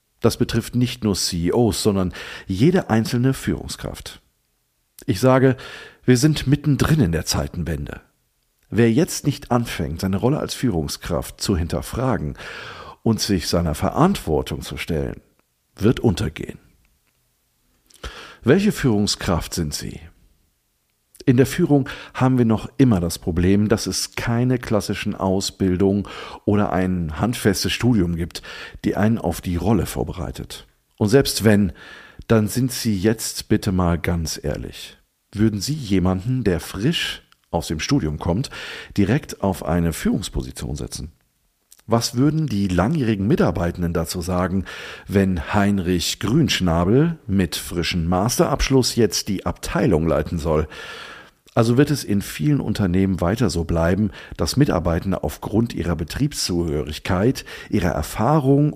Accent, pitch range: German, 85-125 Hz